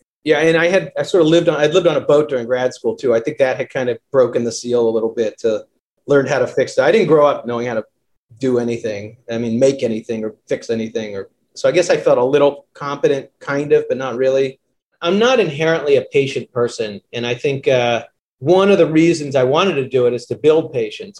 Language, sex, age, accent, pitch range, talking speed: English, male, 40-59, American, 130-200 Hz, 250 wpm